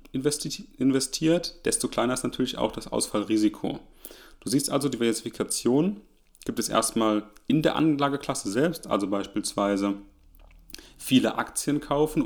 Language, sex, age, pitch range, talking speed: German, male, 30-49, 110-145 Hz, 120 wpm